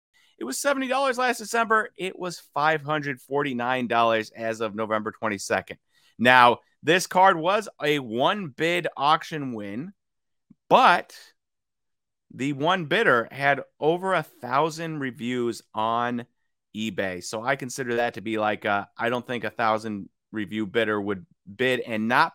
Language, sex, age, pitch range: English, male, 30-49, 110-155 Hz